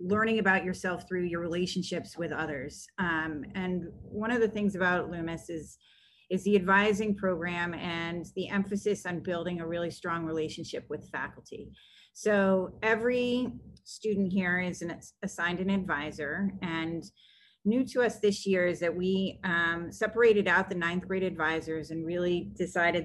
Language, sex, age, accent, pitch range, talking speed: English, female, 30-49, American, 165-190 Hz, 155 wpm